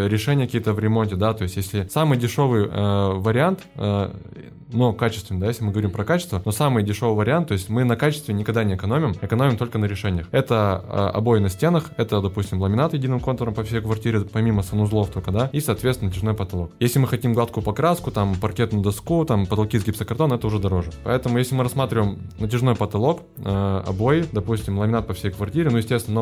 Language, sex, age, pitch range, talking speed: Russian, male, 20-39, 100-115 Hz, 200 wpm